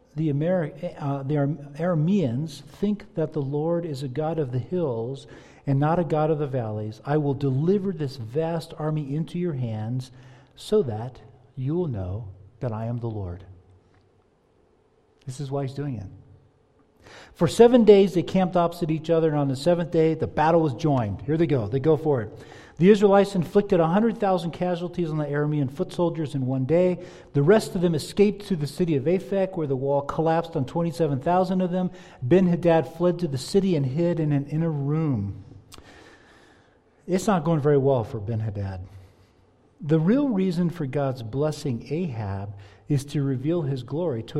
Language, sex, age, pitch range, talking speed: English, male, 50-69, 130-175 Hz, 175 wpm